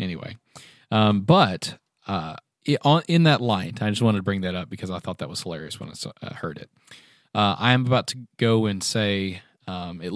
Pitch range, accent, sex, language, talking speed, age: 100-120 Hz, American, male, English, 200 wpm, 30-49